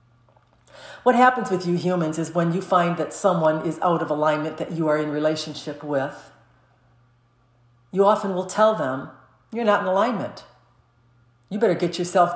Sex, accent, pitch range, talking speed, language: female, American, 125-175 Hz, 165 wpm, English